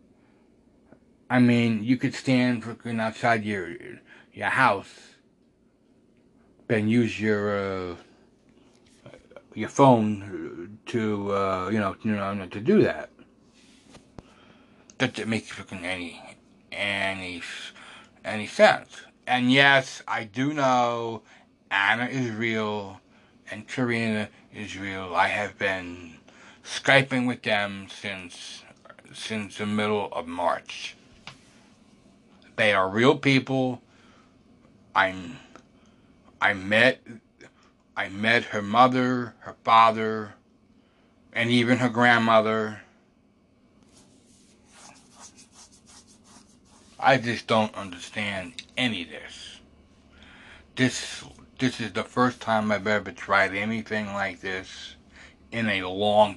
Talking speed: 100 wpm